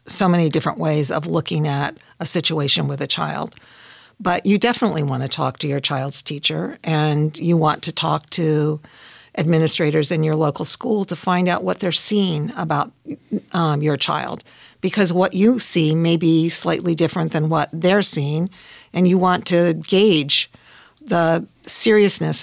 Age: 50-69